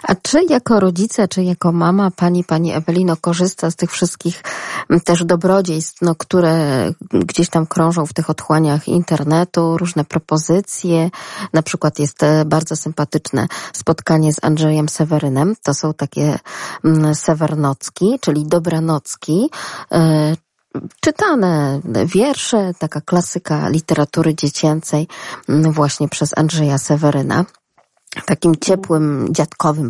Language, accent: Polish, native